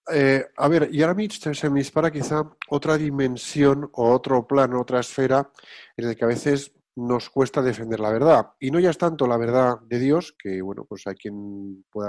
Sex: male